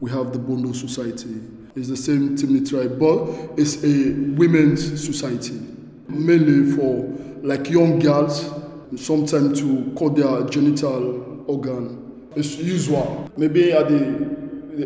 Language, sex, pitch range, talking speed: Italian, male, 130-150 Hz, 130 wpm